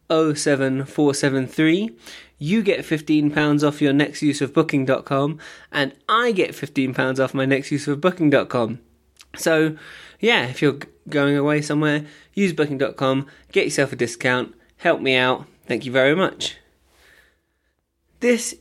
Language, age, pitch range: English, 20-39, 130-160 Hz